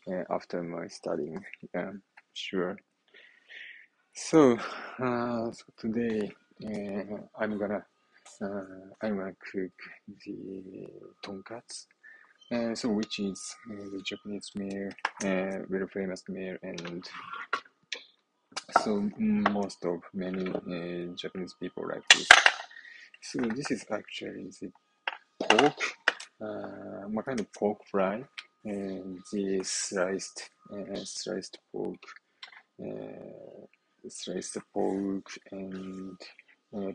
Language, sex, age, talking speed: English, male, 20-39, 105 wpm